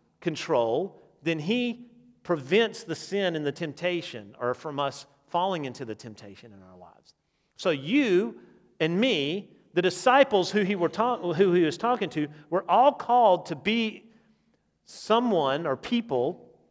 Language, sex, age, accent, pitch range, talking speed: English, male, 40-59, American, 145-200 Hz, 150 wpm